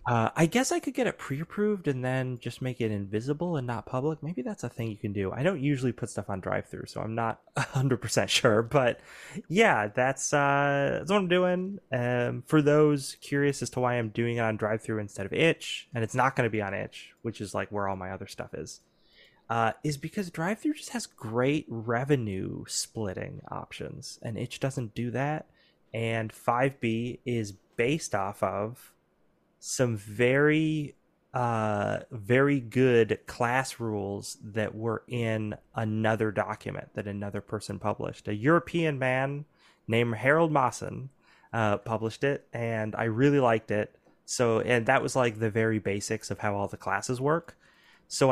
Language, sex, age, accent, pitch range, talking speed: English, male, 20-39, American, 110-140 Hz, 175 wpm